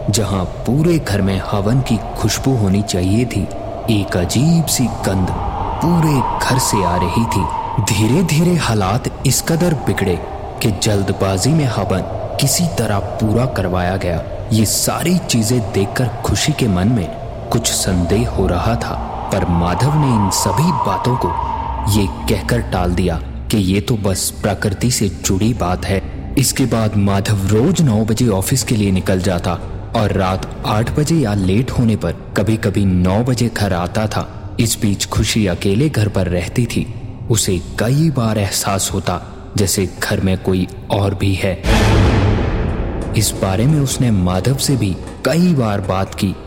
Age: 30-49